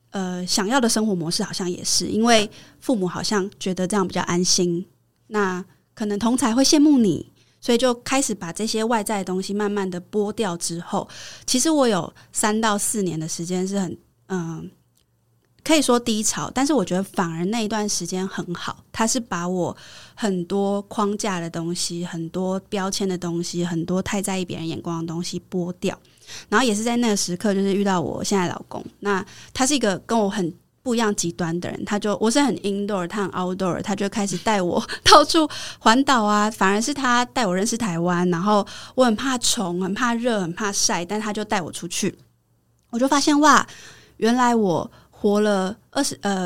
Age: 20-39